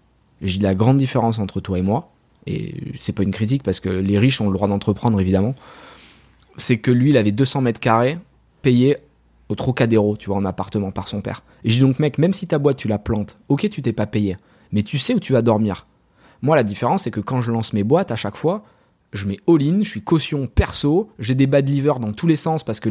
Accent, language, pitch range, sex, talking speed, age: French, French, 105-140 Hz, male, 250 wpm, 20-39